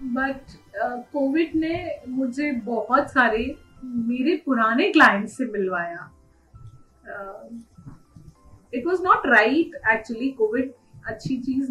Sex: female